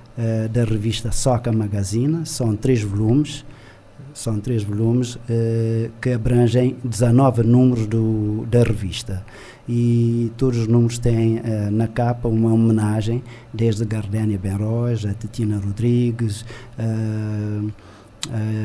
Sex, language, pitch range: male, Portuguese, 110-125 Hz